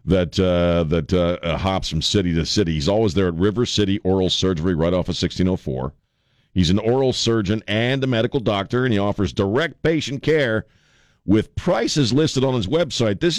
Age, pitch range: 50-69, 90-120 Hz